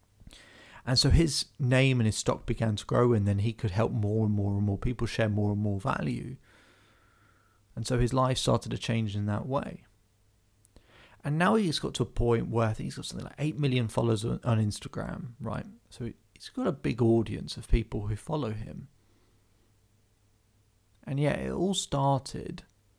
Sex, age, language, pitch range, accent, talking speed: male, 30-49, English, 105-125 Hz, British, 185 wpm